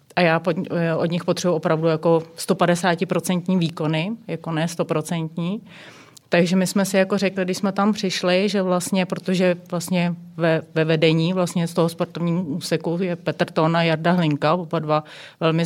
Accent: native